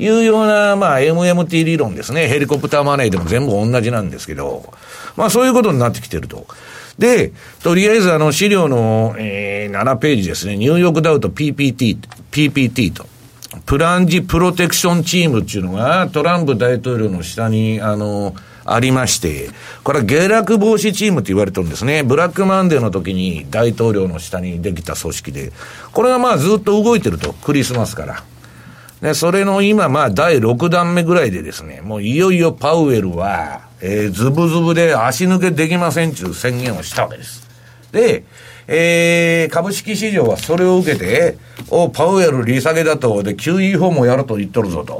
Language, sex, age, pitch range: Japanese, male, 50-69, 110-180 Hz